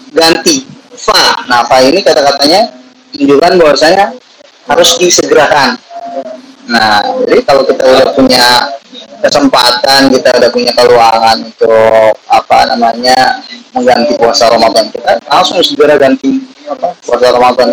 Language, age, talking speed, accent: Indonesian, 20-39, 115 wpm, native